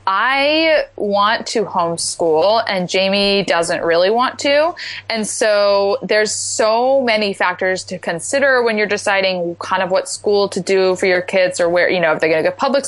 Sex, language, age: female, English, 20-39